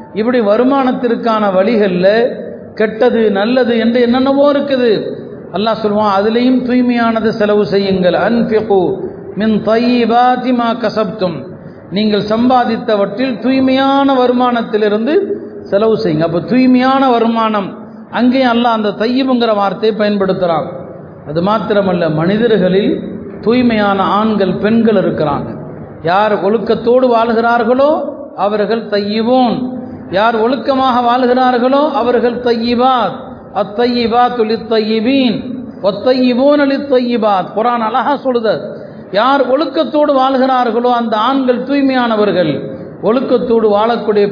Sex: male